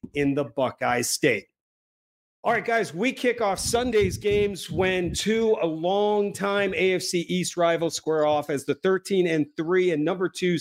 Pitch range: 150-190 Hz